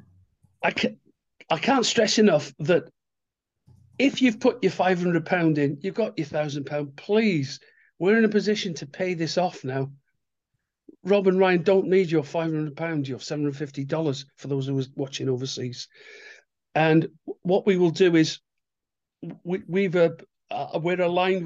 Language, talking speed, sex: English, 175 wpm, male